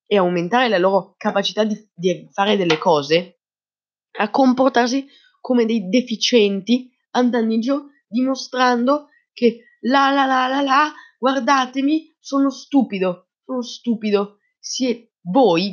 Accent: native